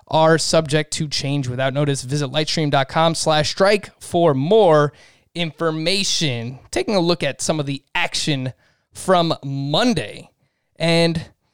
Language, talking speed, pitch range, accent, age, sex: English, 125 wpm, 130-170 Hz, American, 20-39, male